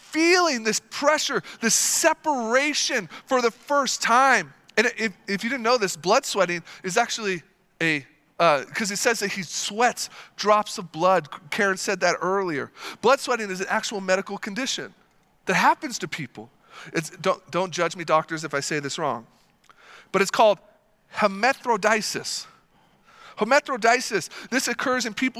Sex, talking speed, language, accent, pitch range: male, 155 wpm, English, American, 185-235 Hz